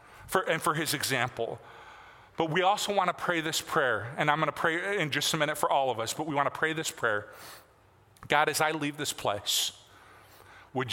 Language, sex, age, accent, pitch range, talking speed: English, male, 40-59, American, 120-155 Hz, 200 wpm